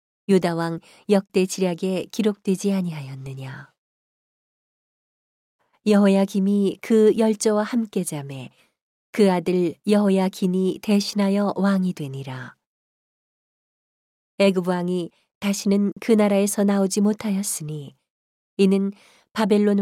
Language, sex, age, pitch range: Korean, female, 40-59, 165-205 Hz